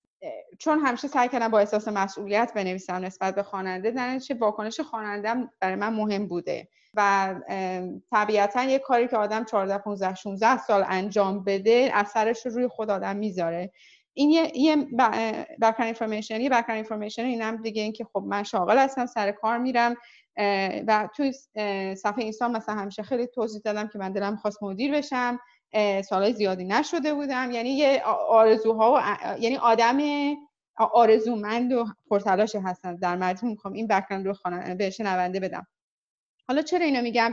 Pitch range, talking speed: 200-250 Hz, 155 wpm